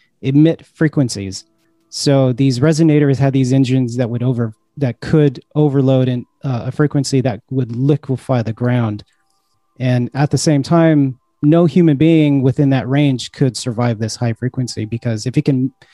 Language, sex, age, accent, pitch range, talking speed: English, male, 30-49, American, 125-150 Hz, 160 wpm